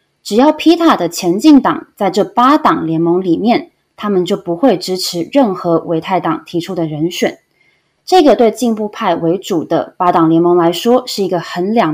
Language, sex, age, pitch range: Chinese, female, 20-39, 170-245 Hz